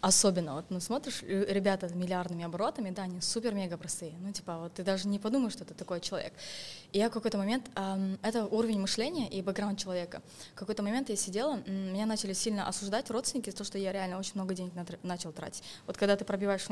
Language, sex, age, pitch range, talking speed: Russian, female, 20-39, 190-230 Hz, 215 wpm